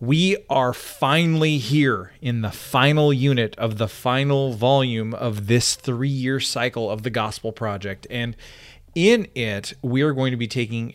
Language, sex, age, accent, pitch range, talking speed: English, male, 30-49, American, 110-140 Hz, 160 wpm